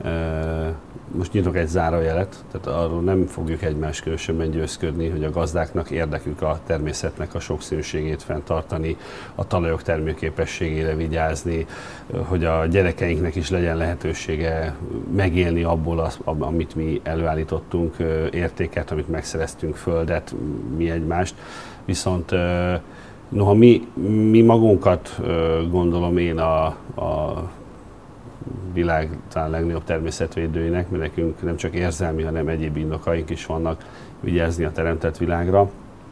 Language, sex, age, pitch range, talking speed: Hungarian, male, 40-59, 80-90 Hz, 115 wpm